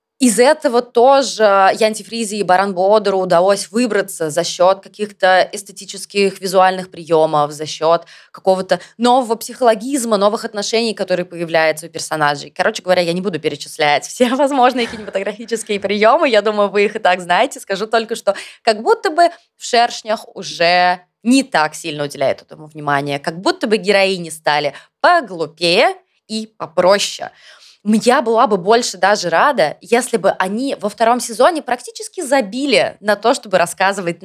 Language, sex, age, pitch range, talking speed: Russian, female, 20-39, 180-235 Hz, 150 wpm